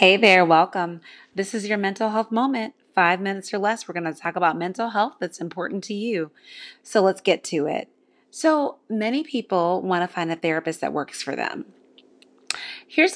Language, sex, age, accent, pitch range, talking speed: English, female, 30-49, American, 175-220 Hz, 190 wpm